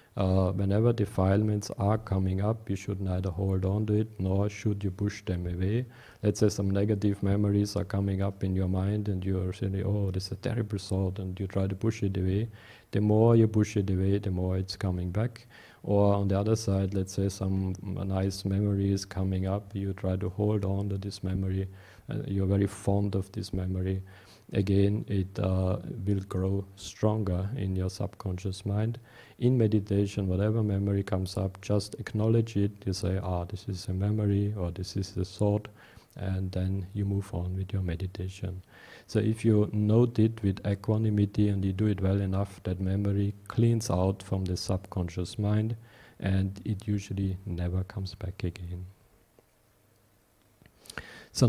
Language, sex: English, male